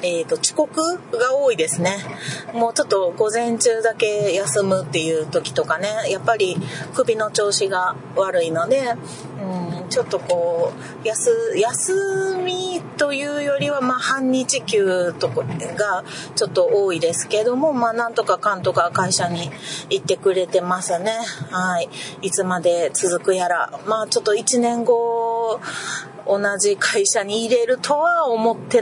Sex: female